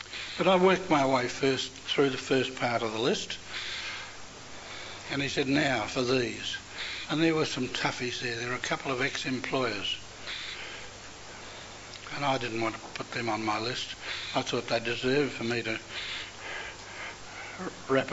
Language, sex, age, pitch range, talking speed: English, male, 60-79, 110-135 Hz, 165 wpm